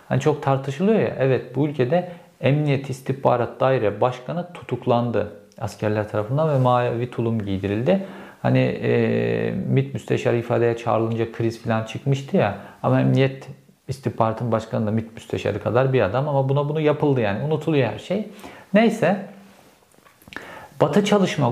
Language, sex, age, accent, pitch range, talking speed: Turkish, male, 50-69, native, 110-140 Hz, 135 wpm